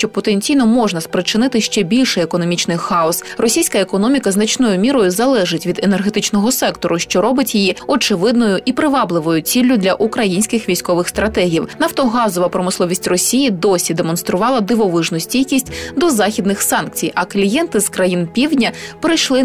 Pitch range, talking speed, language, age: 180-250 Hz, 135 wpm, Ukrainian, 20-39